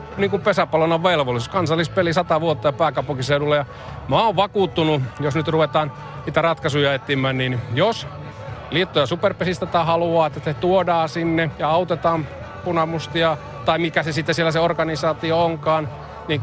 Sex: male